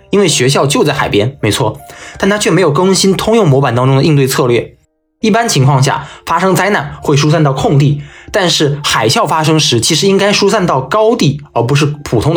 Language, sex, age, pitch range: Chinese, male, 20-39, 130-170 Hz